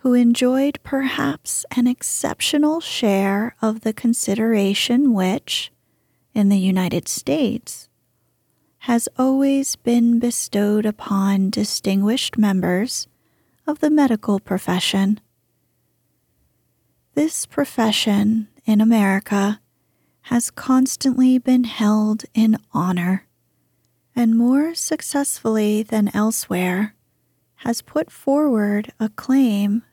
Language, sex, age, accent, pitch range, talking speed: English, female, 30-49, American, 205-255 Hz, 90 wpm